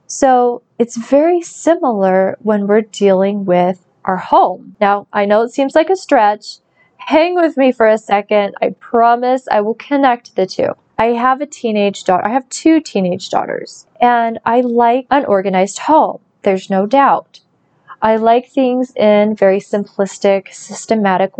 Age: 20-39